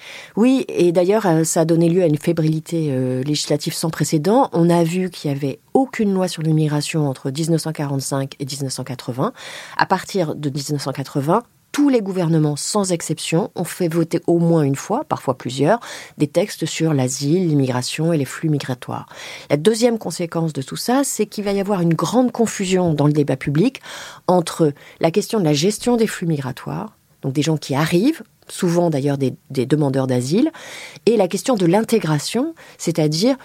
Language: French